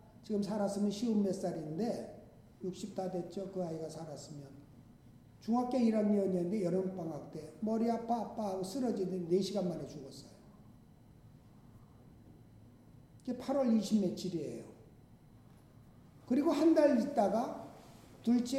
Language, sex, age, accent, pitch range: Korean, male, 50-69, native, 160-230 Hz